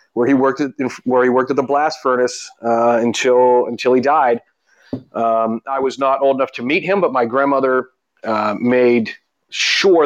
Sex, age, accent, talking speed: male, 30-49, American, 185 wpm